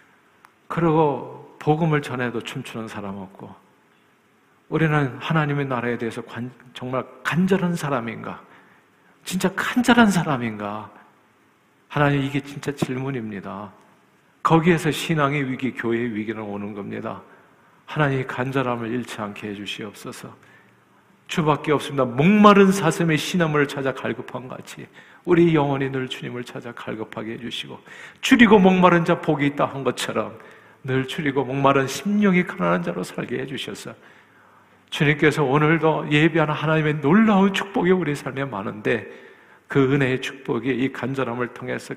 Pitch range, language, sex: 120-160 Hz, Korean, male